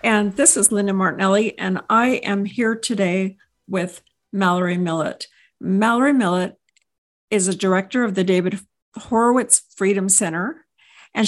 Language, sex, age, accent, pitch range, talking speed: English, female, 50-69, American, 180-220 Hz, 135 wpm